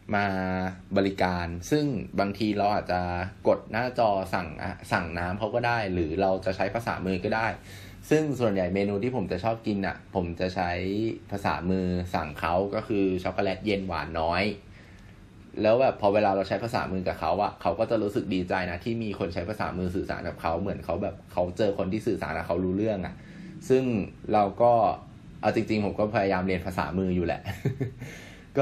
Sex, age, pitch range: male, 20-39, 90-115 Hz